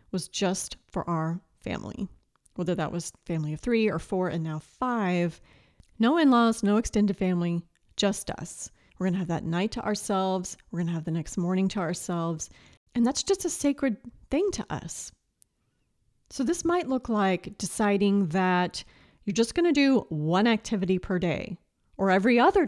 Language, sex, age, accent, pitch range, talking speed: English, female, 30-49, American, 180-240 Hz, 170 wpm